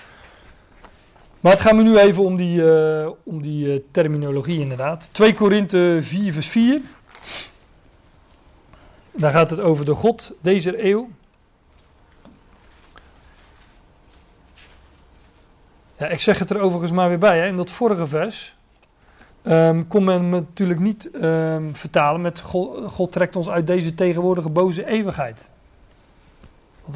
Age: 40-59